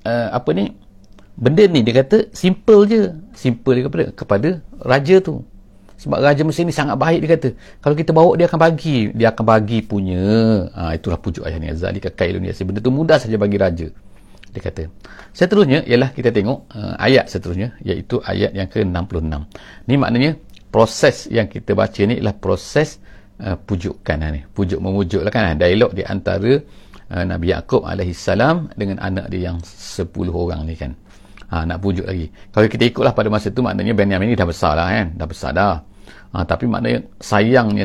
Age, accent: 50-69, Indonesian